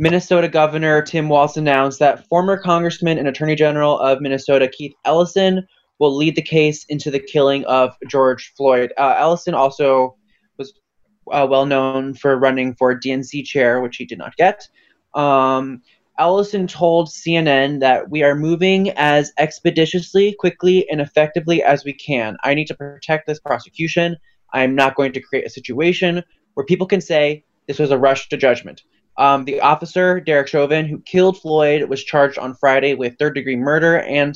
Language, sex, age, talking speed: English, male, 20-39, 170 wpm